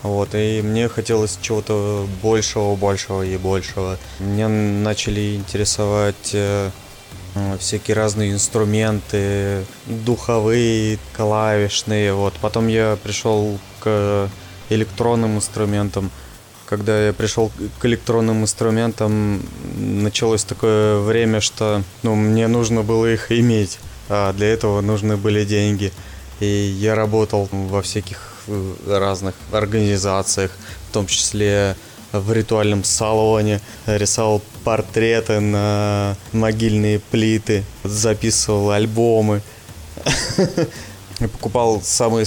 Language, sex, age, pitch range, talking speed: Russian, male, 20-39, 100-110 Hz, 95 wpm